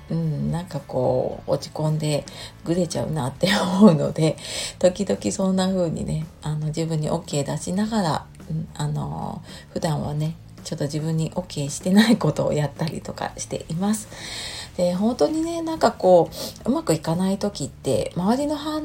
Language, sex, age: Japanese, female, 40-59